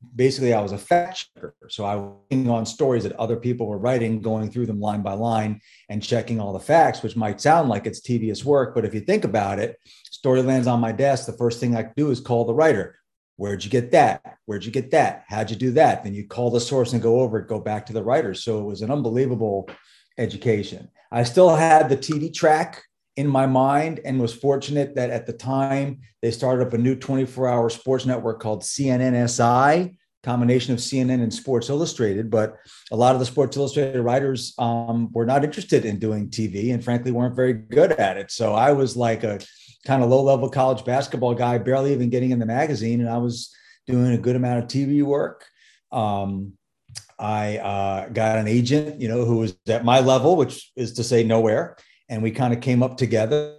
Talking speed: 215 wpm